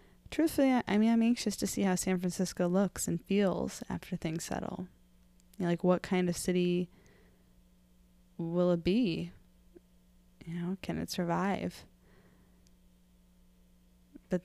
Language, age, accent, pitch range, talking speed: English, 20-39, American, 170-200 Hz, 125 wpm